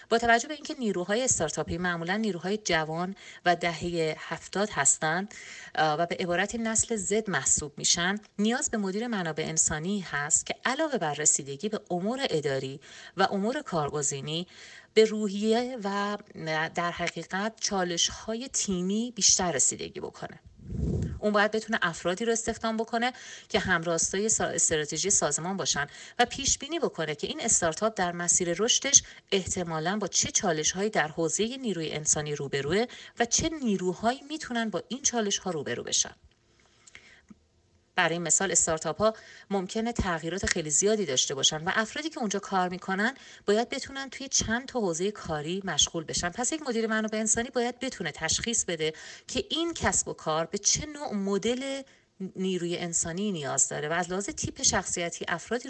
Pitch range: 170-230 Hz